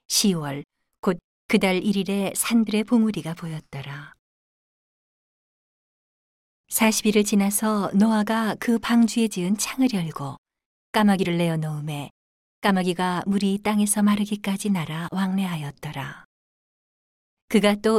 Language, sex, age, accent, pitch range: Korean, female, 40-59, native, 160-210 Hz